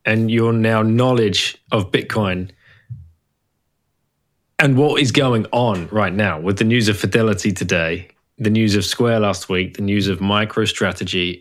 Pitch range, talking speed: 100-120 Hz, 155 wpm